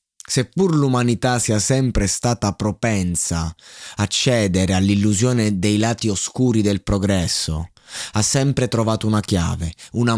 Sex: male